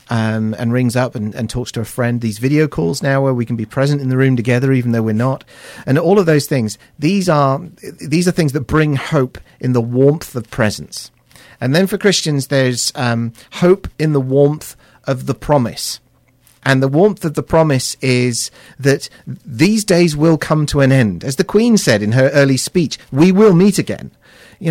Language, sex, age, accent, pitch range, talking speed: English, male, 40-59, British, 125-165 Hz, 210 wpm